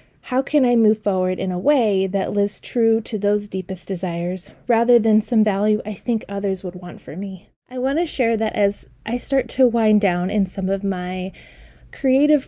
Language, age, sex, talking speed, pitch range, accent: English, 20-39, female, 200 wpm, 190-230 Hz, American